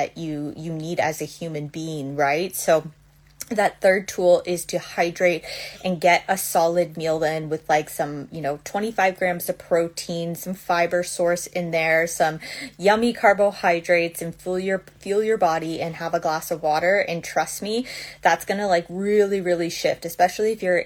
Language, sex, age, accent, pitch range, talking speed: English, female, 20-39, American, 160-185 Hz, 180 wpm